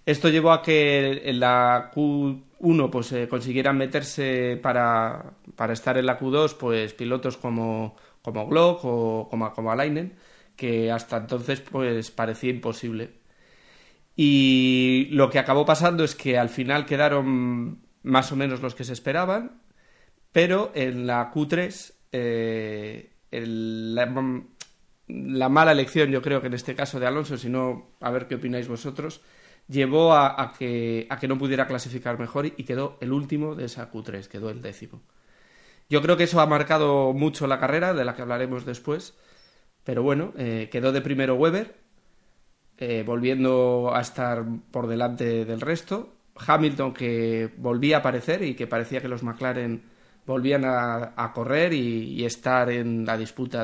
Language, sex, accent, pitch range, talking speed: Spanish, male, Spanish, 120-145 Hz, 160 wpm